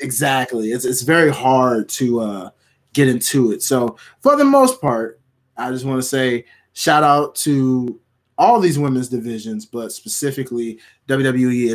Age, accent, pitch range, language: 20-39, American, 125-200 Hz, English